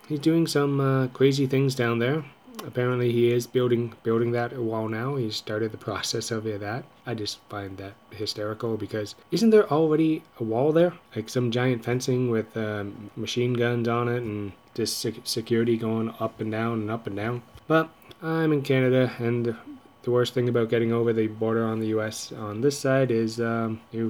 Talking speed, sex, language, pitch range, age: 190 wpm, male, English, 115-135 Hz, 20-39